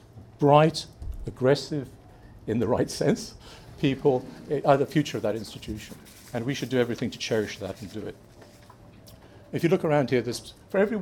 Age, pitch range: 50-69, 110-145 Hz